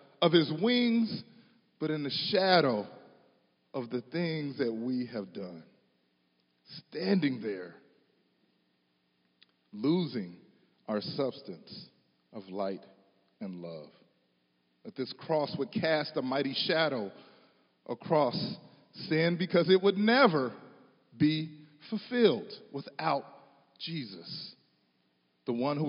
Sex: male